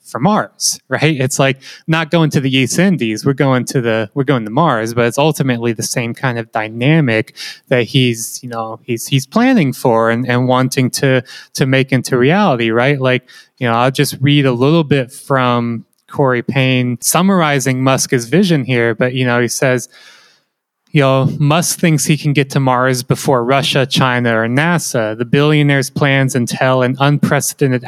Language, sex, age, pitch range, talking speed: English, male, 20-39, 125-155 Hz, 185 wpm